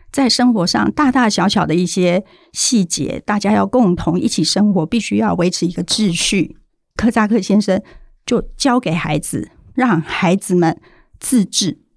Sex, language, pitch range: female, Chinese, 180-230 Hz